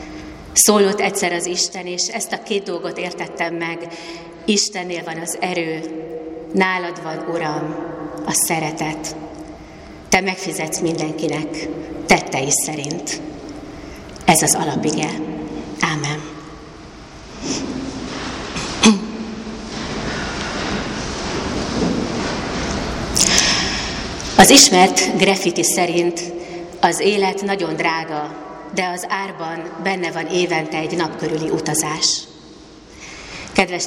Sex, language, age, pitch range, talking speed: female, Hungarian, 30-49, 160-180 Hz, 85 wpm